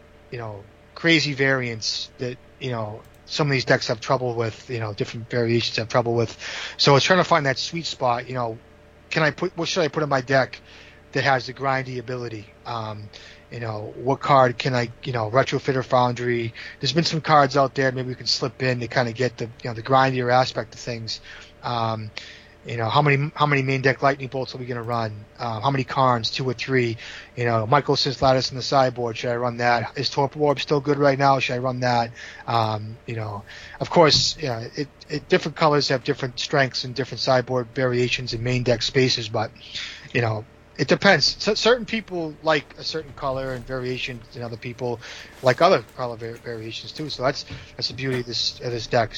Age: 30-49